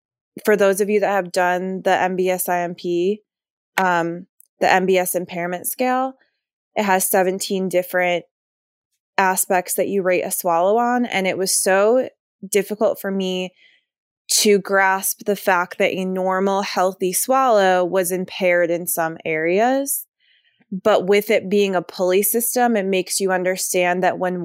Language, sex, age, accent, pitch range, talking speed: English, female, 20-39, American, 175-200 Hz, 145 wpm